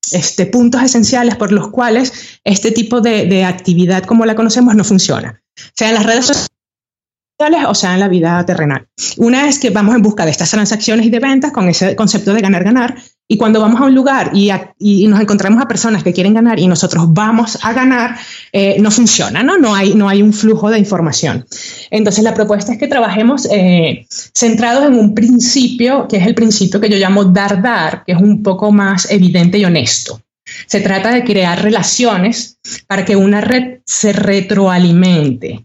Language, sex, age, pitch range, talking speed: Spanish, female, 30-49, 185-225 Hz, 195 wpm